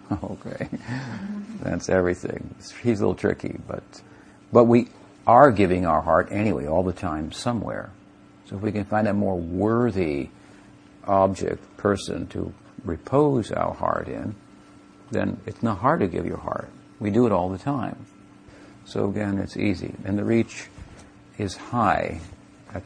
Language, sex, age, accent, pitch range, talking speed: English, male, 60-79, American, 95-105 Hz, 155 wpm